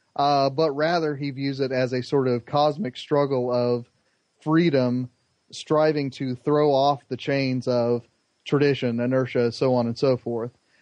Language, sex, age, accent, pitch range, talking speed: English, male, 30-49, American, 125-145 Hz, 155 wpm